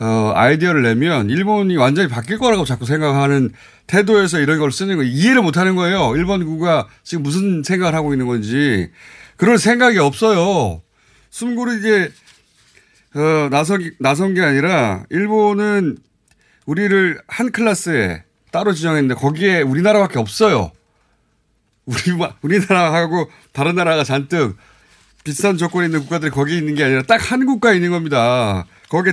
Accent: native